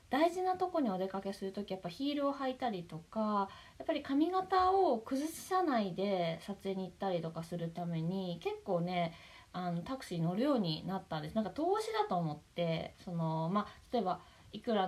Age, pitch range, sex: 20-39, 170-245 Hz, female